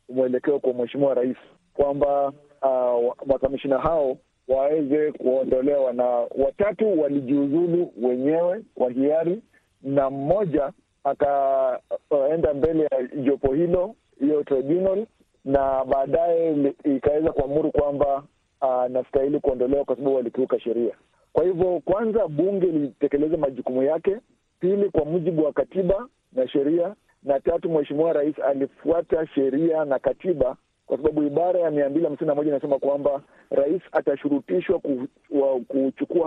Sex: male